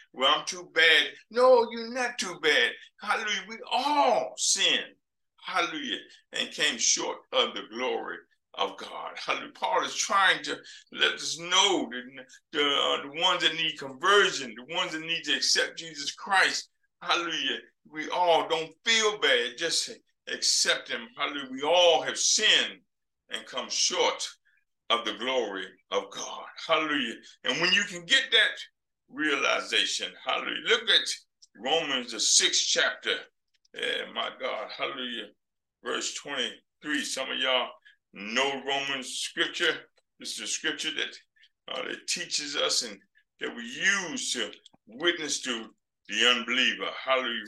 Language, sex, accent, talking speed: English, male, American, 145 wpm